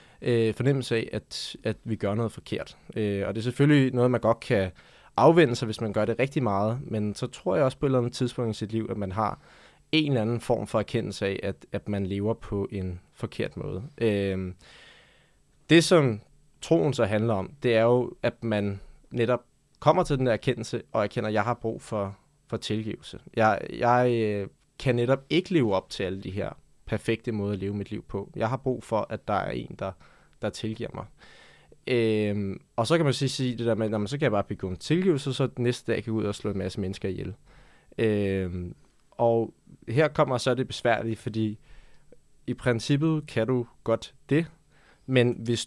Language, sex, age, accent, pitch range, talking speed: Danish, male, 20-39, native, 105-130 Hz, 205 wpm